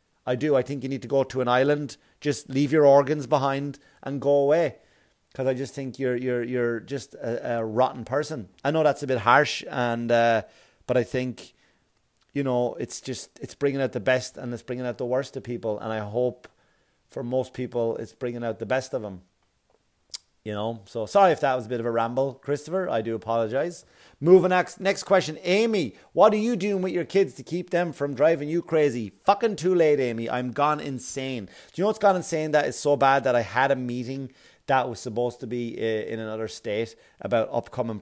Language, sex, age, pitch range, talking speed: English, male, 30-49, 115-145 Hz, 220 wpm